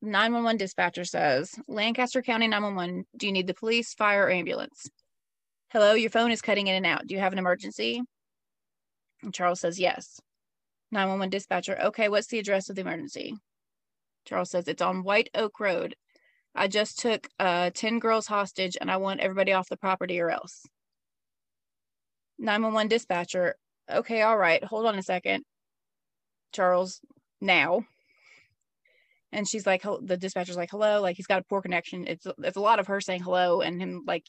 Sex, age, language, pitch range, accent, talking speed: female, 20-39, English, 180-220 Hz, American, 170 wpm